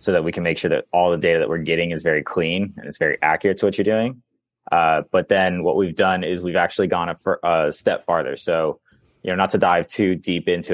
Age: 20-39